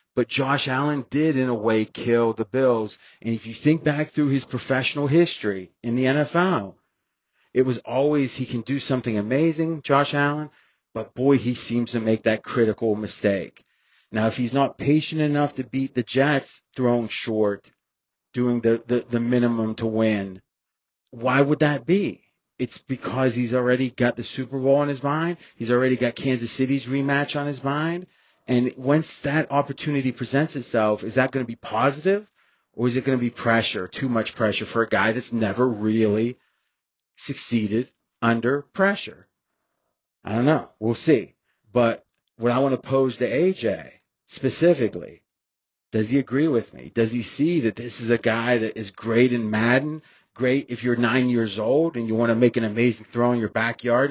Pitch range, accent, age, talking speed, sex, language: 115-140 Hz, American, 30-49, 180 wpm, male, English